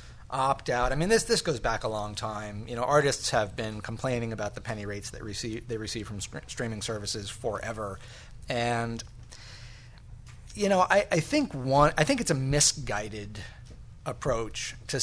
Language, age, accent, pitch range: English, 30-49, American, 115-135 Hz